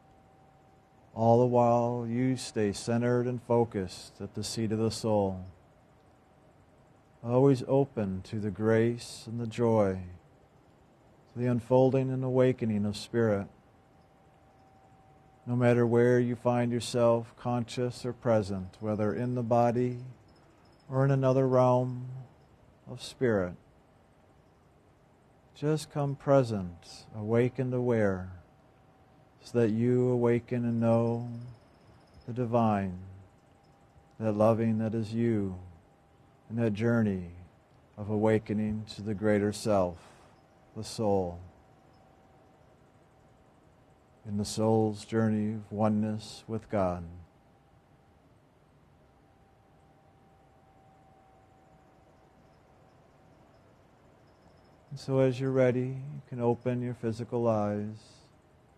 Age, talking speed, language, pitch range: 50-69, 95 wpm, English, 105-125 Hz